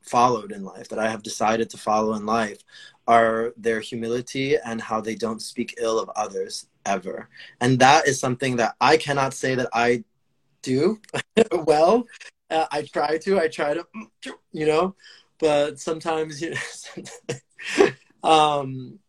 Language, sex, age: English, male, 20-39